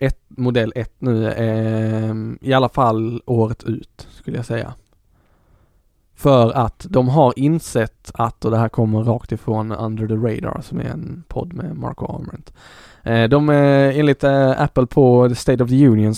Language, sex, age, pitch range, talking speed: Swedish, male, 20-39, 110-125 Hz, 165 wpm